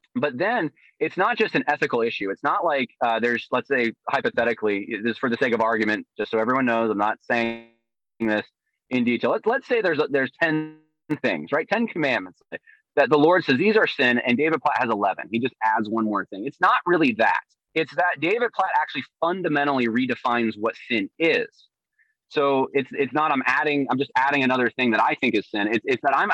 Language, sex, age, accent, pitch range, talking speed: English, male, 30-49, American, 115-155 Hz, 215 wpm